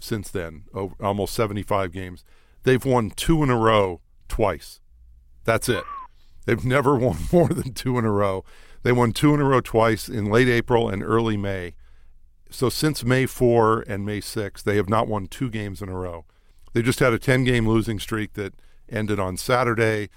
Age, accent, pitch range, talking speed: 50-69, American, 95-125 Hz, 190 wpm